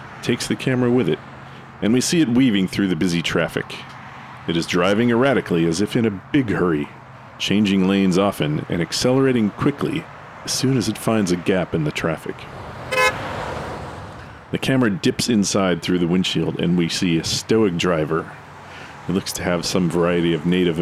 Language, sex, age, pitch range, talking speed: English, male, 40-59, 85-125 Hz, 175 wpm